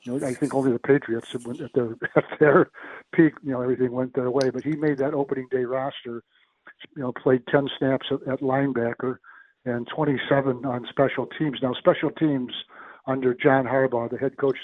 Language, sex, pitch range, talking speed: English, male, 125-140 Hz, 175 wpm